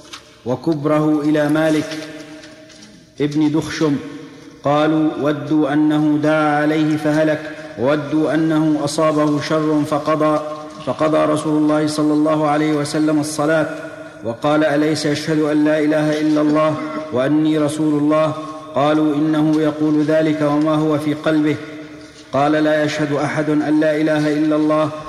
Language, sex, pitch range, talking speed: Arabic, male, 150-155 Hz, 125 wpm